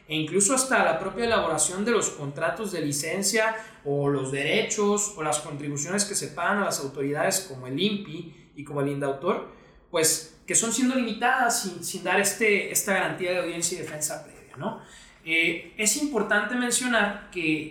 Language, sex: Spanish, male